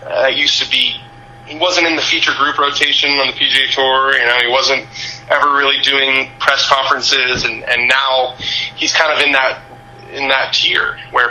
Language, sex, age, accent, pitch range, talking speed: English, male, 30-49, American, 115-135 Hz, 190 wpm